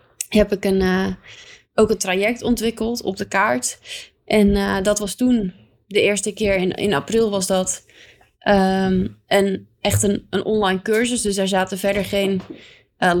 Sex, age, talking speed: female, 20-39, 170 wpm